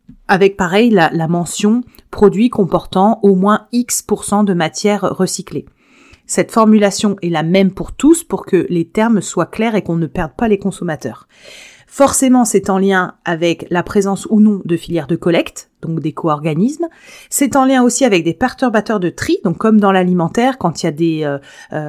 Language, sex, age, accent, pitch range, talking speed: French, female, 30-49, French, 175-235 Hz, 195 wpm